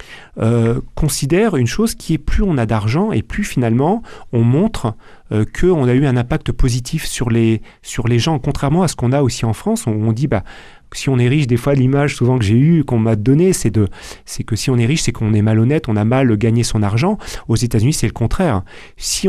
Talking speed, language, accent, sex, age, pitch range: 245 wpm, French, French, male, 40-59, 115-145 Hz